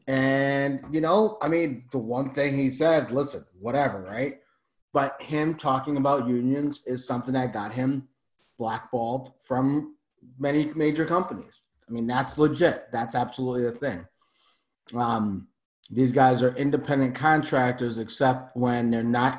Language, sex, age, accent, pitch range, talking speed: English, male, 30-49, American, 130-160 Hz, 140 wpm